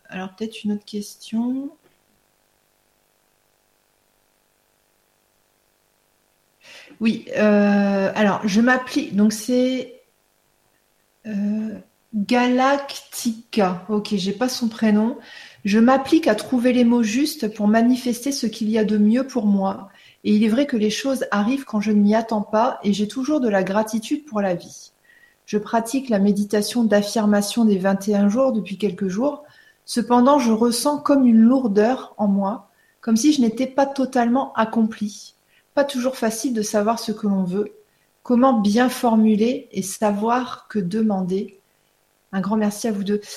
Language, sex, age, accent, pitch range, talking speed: French, female, 40-59, French, 195-240 Hz, 150 wpm